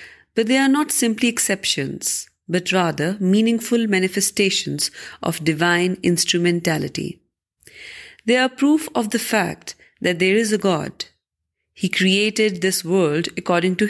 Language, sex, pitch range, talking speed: Urdu, female, 170-225 Hz, 130 wpm